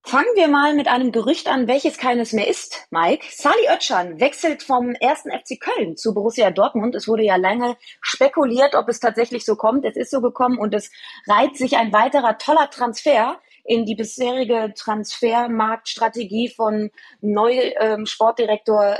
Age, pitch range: 30-49, 215-255 Hz